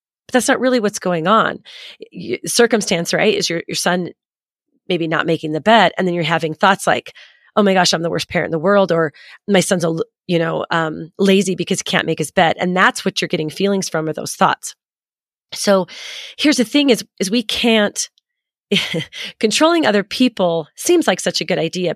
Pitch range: 170-225 Hz